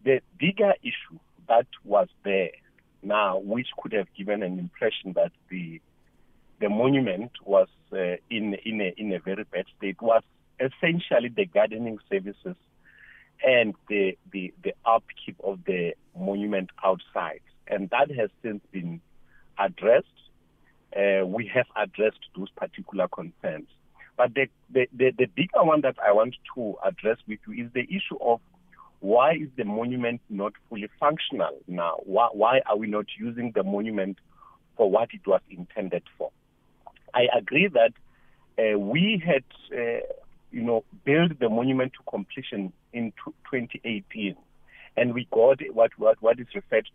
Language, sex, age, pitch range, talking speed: English, male, 50-69, 100-135 Hz, 150 wpm